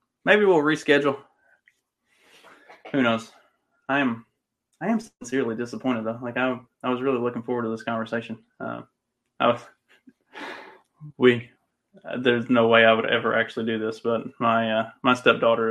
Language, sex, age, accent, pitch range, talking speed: English, male, 20-39, American, 115-145 Hz, 155 wpm